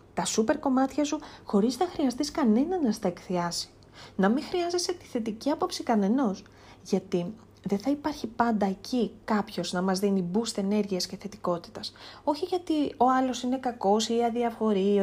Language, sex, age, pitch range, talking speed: Greek, female, 30-49, 185-250 Hz, 160 wpm